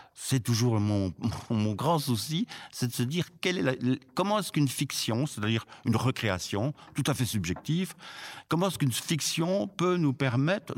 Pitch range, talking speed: 105-145 Hz, 175 wpm